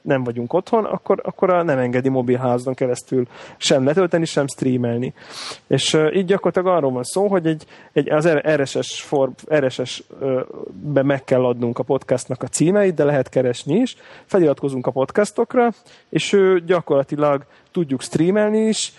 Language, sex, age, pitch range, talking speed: Hungarian, male, 30-49, 130-170 Hz, 150 wpm